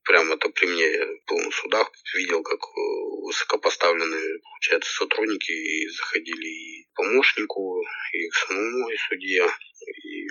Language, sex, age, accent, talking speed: Russian, male, 20-39, native, 140 wpm